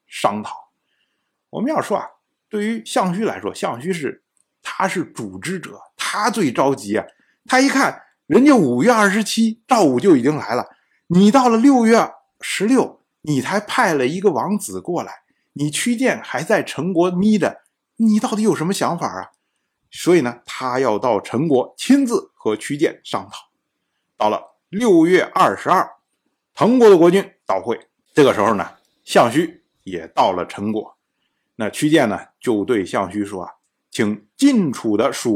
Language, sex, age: Chinese, male, 50-69